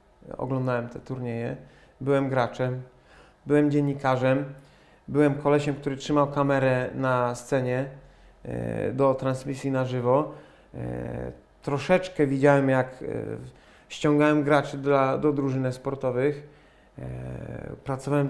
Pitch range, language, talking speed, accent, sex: 130-150 Hz, Polish, 90 wpm, native, male